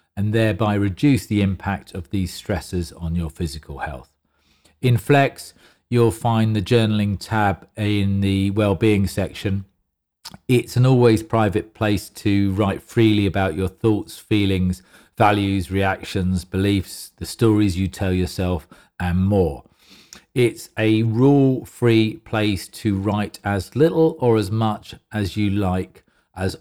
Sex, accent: male, British